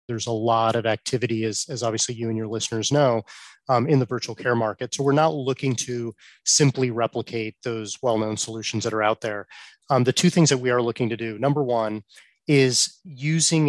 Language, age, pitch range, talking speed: English, 30-49, 115-135 Hz, 205 wpm